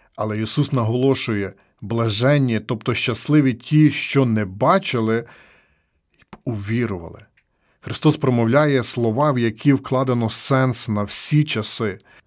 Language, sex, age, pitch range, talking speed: Ukrainian, male, 40-59, 105-135 Hz, 110 wpm